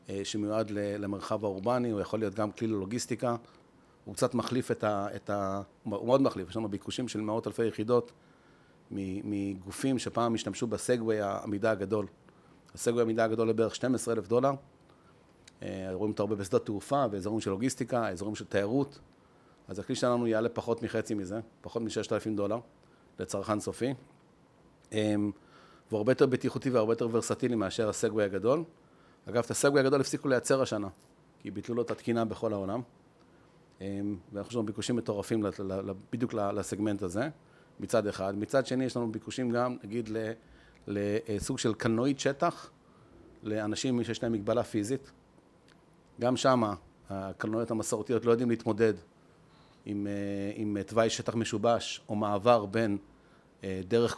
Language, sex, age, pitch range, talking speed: Hebrew, male, 40-59, 100-120 Hz, 140 wpm